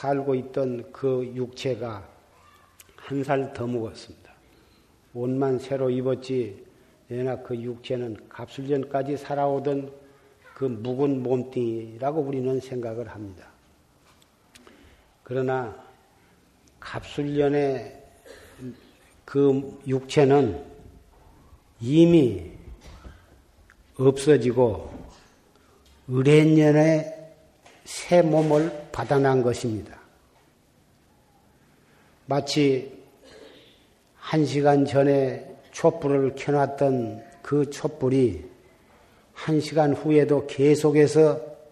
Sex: male